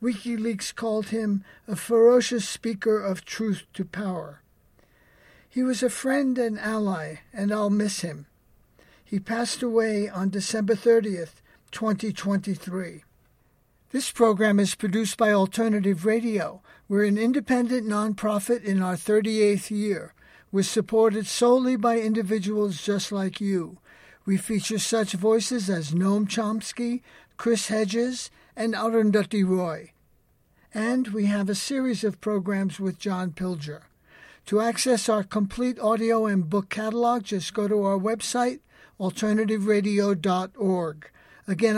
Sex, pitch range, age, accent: male, 195-225 Hz, 60-79, American